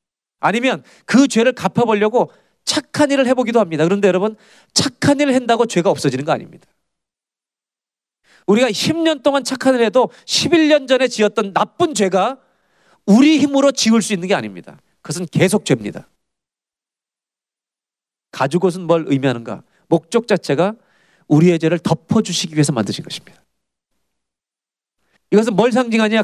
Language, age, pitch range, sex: Korean, 40-59, 185-280 Hz, male